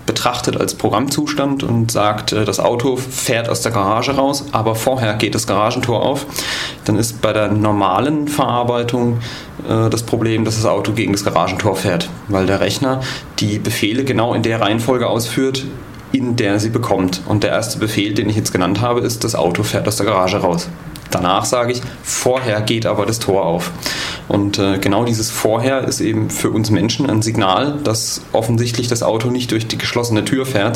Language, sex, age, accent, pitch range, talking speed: German, male, 30-49, German, 105-120 Hz, 185 wpm